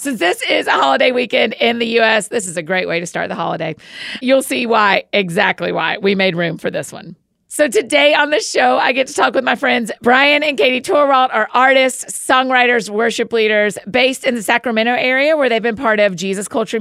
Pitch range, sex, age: 200-255 Hz, female, 40-59